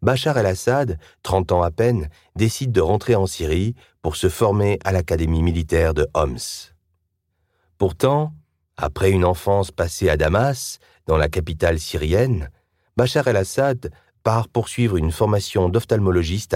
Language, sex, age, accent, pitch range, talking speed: French, male, 40-59, French, 80-105 Hz, 135 wpm